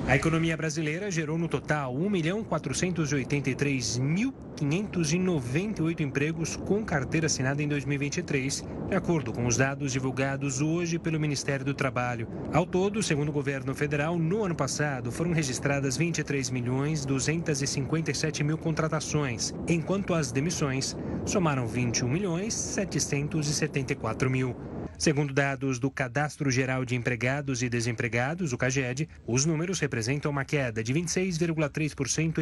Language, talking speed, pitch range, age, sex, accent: Portuguese, 110 wpm, 135-165 Hz, 30-49, male, Brazilian